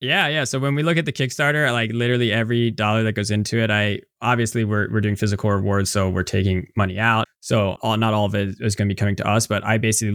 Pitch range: 95-120 Hz